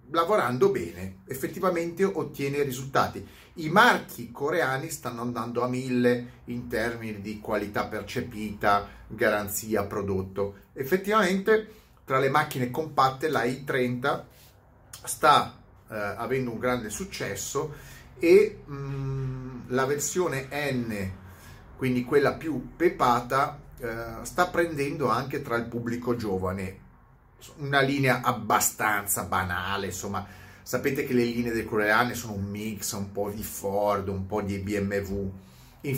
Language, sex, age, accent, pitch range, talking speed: Italian, male, 30-49, native, 100-130 Hz, 120 wpm